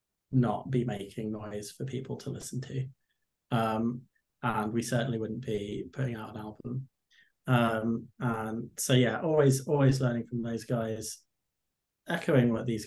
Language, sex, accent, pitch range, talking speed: English, male, British, 115-130 Hz, 150 wpm